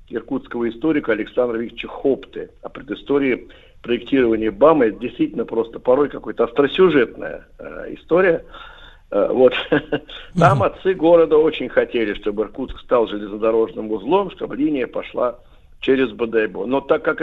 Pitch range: 115-190 Hz